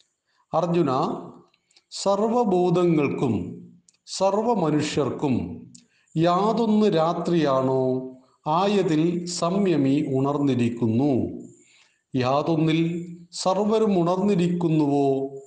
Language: Malayalam